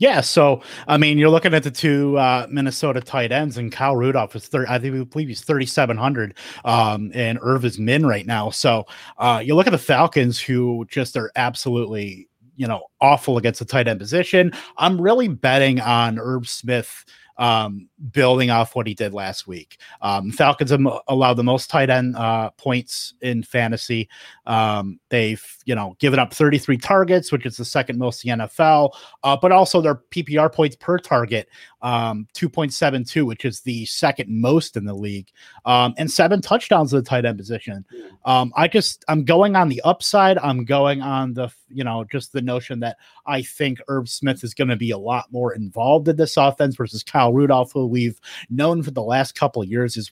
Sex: male